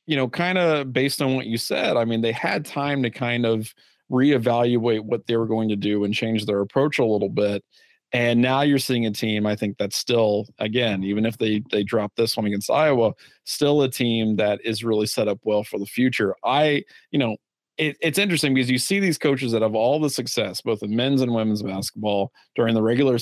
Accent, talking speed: American, 225 wpm